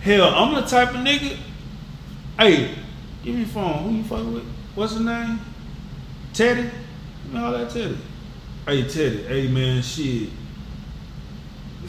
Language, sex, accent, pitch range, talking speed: English, male, American, 145-210 Hz, 145 wpm